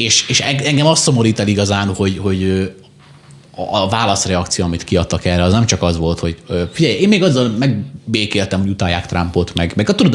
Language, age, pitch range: Hungarian, 30-49, 90-120 Hz